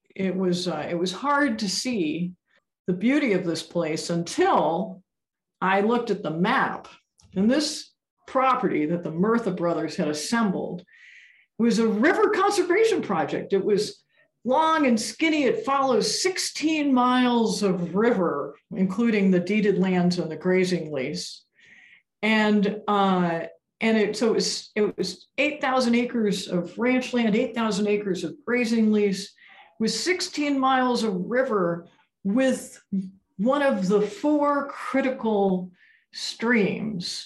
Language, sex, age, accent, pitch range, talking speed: English, female, 50-69, American, 180-250 Hz, 135 wpm